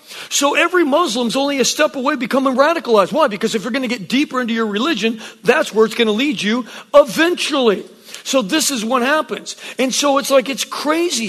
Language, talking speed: English, 215 wpm